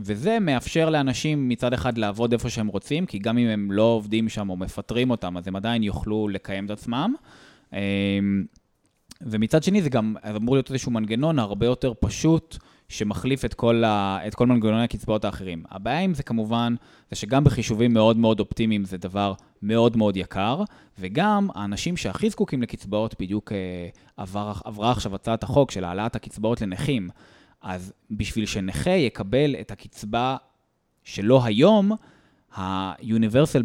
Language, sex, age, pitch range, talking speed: Hebrew, male, 20-39, 105-130 Hz, 150 wpm